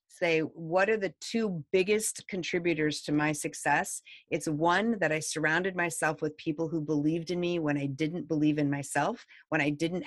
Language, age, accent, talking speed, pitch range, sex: English, 30-49, American, 185 wpm, 150-180 Hz, female